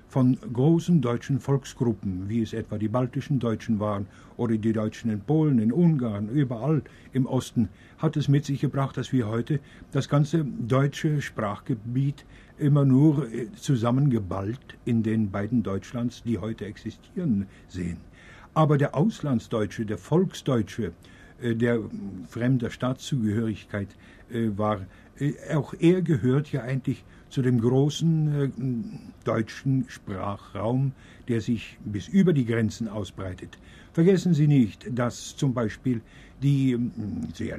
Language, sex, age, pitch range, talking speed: German, male, 60-79, 110-140 Hz, 125 wpm